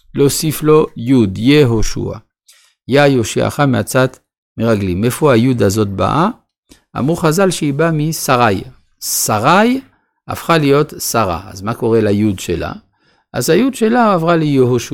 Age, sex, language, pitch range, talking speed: 50-69, male, Hebrew, 110-140 Hz, 130 wpm